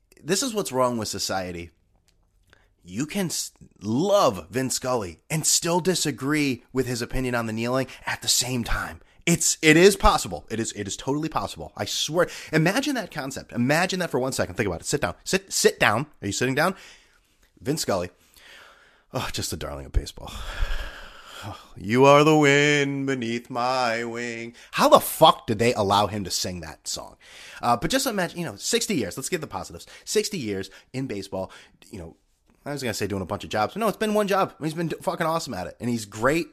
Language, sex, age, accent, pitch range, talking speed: English, male, 30-49, American, 100-155 Hz, 205 wpm